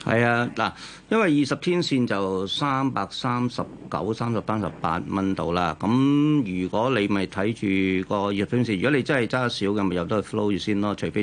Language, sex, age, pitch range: Chinese, male, 40-59, 100-130 Hz